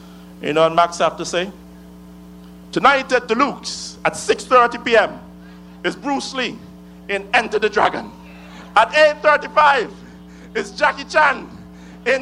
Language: English